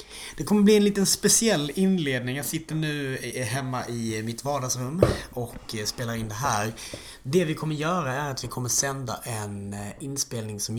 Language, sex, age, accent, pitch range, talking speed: Swedish, male, 30-49, native, 105-135 Hz, 170 wpm